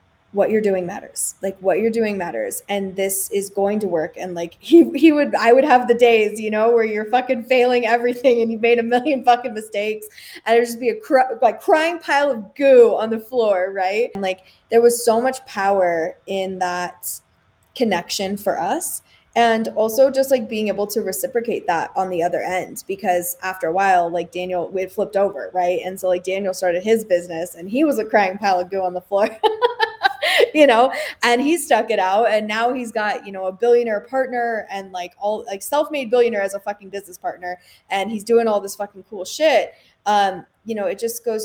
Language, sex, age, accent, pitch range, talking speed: English, female, 20-39, American, 190-245 Hz, 215 wpm